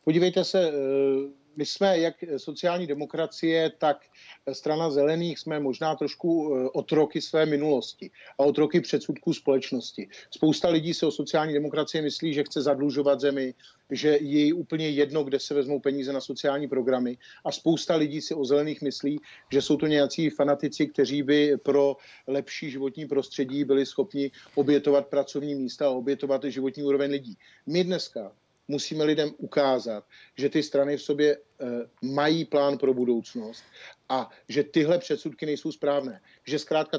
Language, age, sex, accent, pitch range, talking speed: Czech, 50-69, male, native, 140-155 Hz, 150 wpm